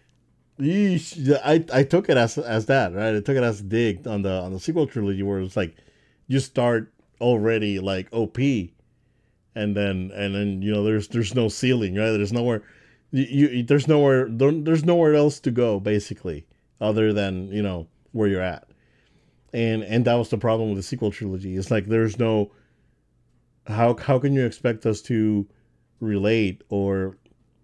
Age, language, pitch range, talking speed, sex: 30-49, English, 100-125 Hz, 175 wpm, male